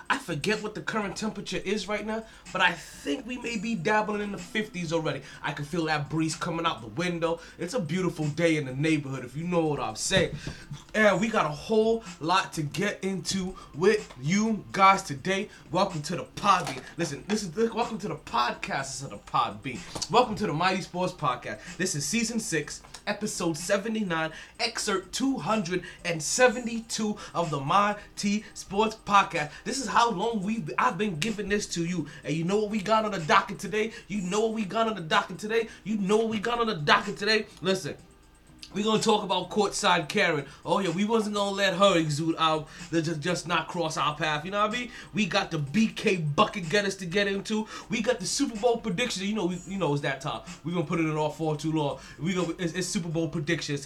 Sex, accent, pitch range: male, American, 165-215 Hz